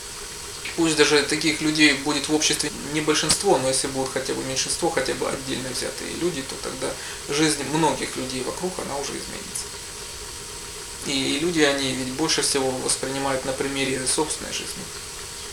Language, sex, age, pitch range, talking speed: Russian, male, 20-39, 130-155 Hz, 155 wpm